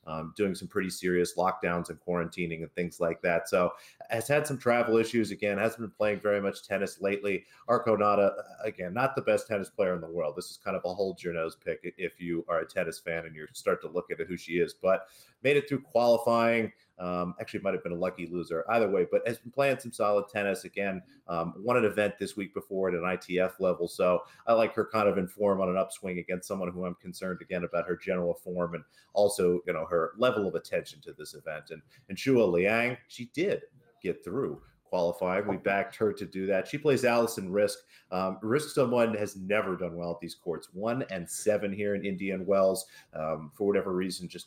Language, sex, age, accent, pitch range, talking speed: English, male, 30-49, American, 90-115 Hz, 225 wpm